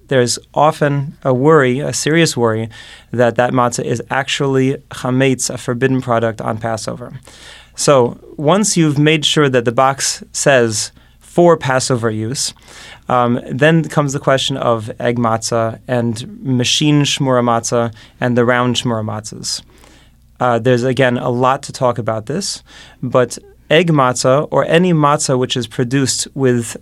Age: 30-49